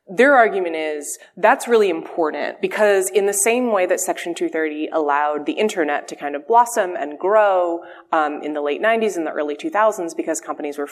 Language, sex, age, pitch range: English, female, 20-39, 150-215 Hz